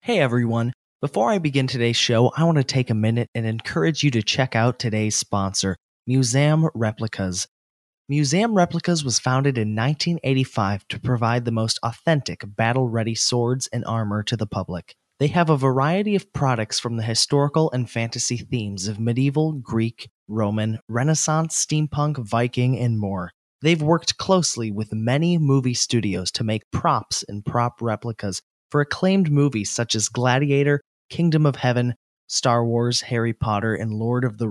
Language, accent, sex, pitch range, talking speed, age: English, American, male, 115-145 Hz, 160 wpm, 20-39